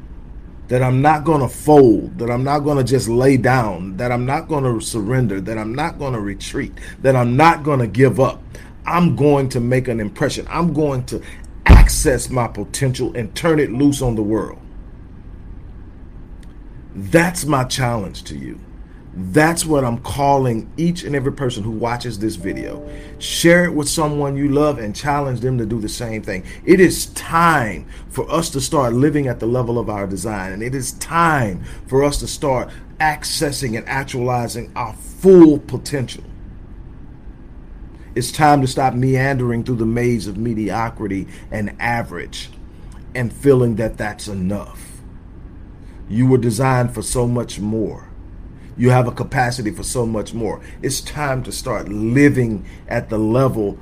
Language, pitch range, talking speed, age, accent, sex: English, 95-130 Hz, 170 wpm, 40-59, American, male